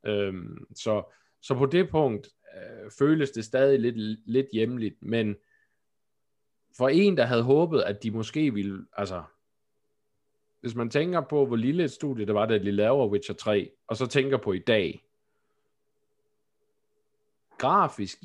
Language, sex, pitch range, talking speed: Danish, male, 105-150 Hz, 150 wpm